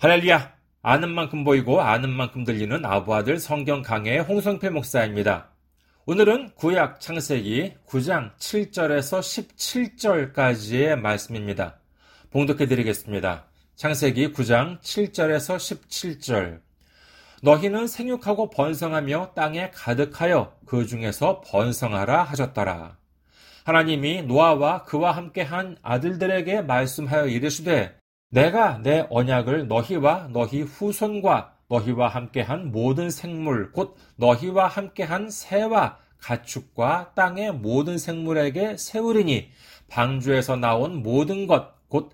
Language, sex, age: Korean, male, 40-59